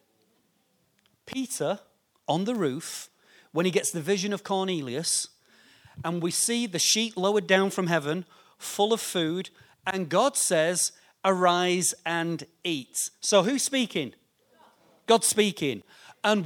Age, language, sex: 40-59, English, male